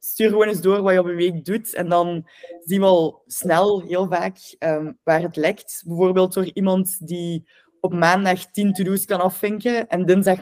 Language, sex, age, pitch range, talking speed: Dutch, female, 20-39, 170-200 Hz, 190 wpm